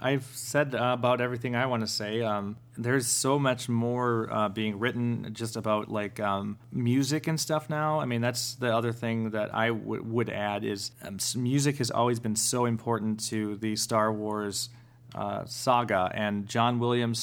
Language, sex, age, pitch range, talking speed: English, male, 30-49, 110-125 Hz, 180 wpm